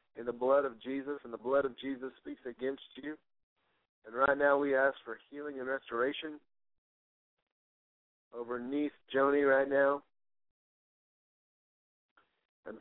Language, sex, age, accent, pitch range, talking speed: English, male, 50-69, American, 125-140 Hz, 130 wpm